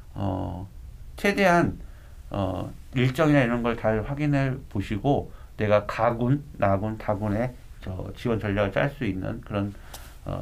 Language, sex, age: Korean, male, 60-79